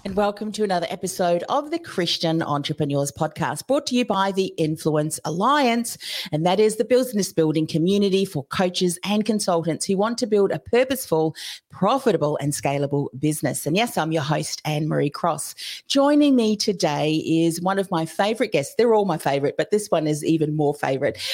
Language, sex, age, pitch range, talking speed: English, female, 40-59, 160-215 Hz, 185 wpm